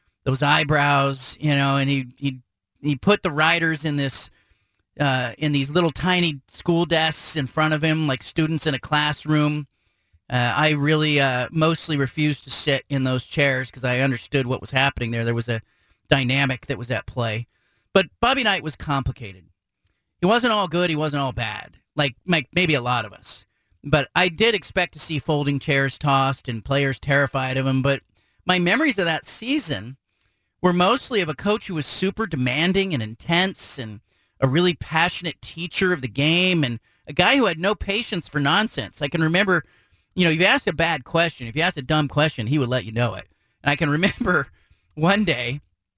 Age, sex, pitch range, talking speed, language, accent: 40-59, male, 130-170 Hz, 200 wpm, English, American